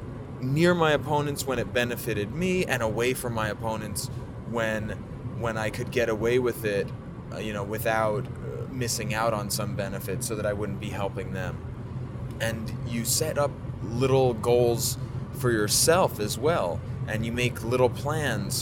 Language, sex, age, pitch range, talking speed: English, male, 20-39, 115-130 Hz, 165 wpm